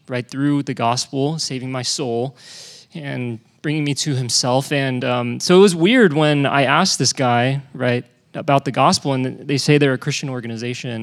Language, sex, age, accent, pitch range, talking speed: English, male, 20-39, American, 120-150 Hz, 185 wpm